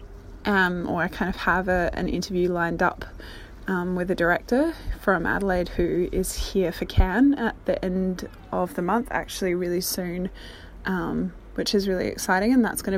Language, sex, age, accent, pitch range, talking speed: English, female, 20-39, Australian, 175-215 Hz, 175 wpm